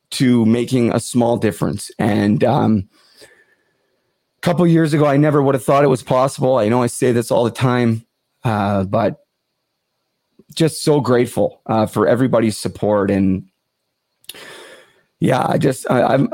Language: English